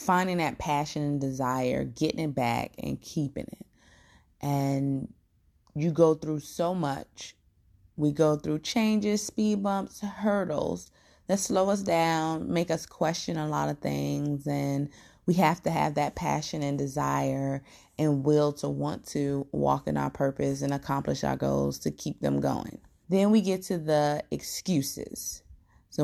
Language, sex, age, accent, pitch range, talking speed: English, female, 20-39, American, 140-175 Hz, 155 wpm